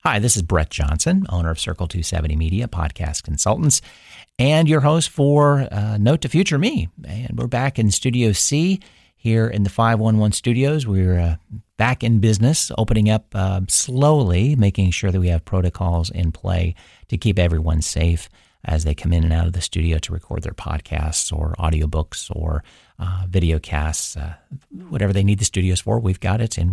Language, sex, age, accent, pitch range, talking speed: English, male, 40-59, American, 85-105 Hz, 190 wpm